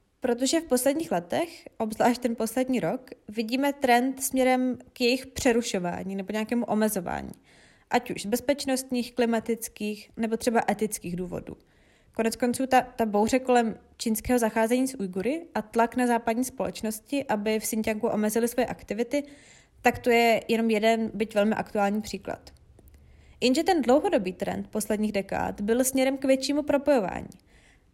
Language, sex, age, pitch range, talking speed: Czech, female, 20-39, 220-275 Hz, 145 wpm